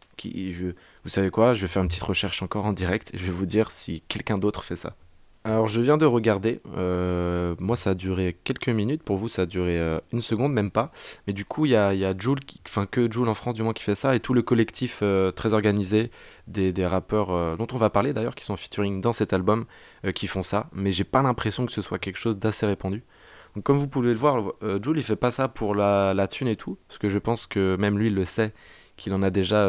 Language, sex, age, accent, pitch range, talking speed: French, male, 20-39, French, 95-115 Hz, 270 wpm